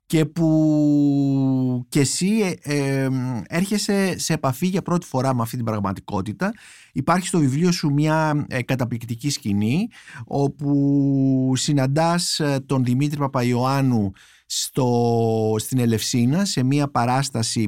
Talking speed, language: 120 wpm, Greek